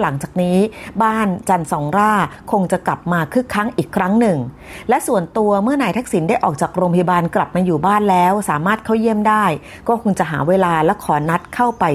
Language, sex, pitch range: Thai, female, 170-220 Hz